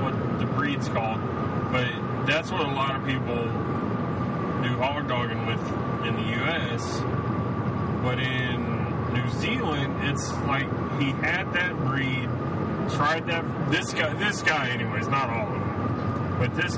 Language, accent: English, American